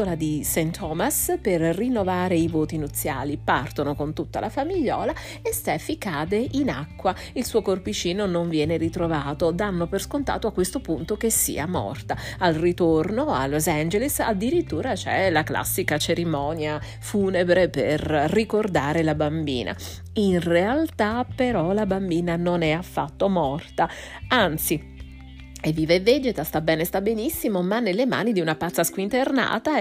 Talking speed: 145 wpm